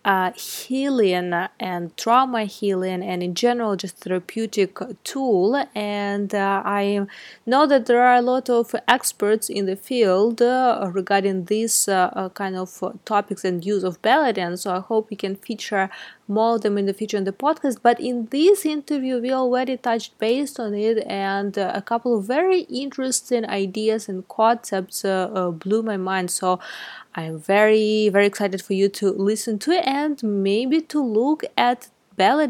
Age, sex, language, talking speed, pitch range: 20-39, female, English, 170 wpm, 200-265 Hz